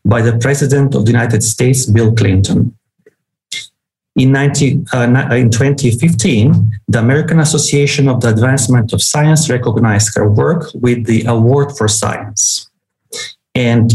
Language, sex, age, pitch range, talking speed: English, male, 40-59, 115-140 Hz, 125 wpm